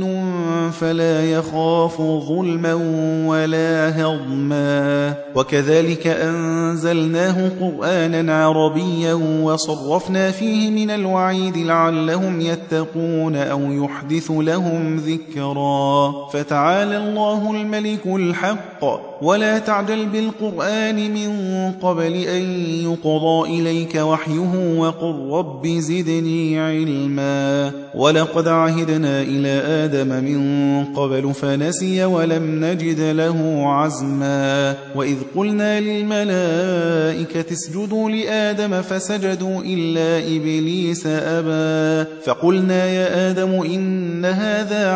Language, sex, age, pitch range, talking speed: Persian, male, 30-49, 155-185 Hz, 80 wpm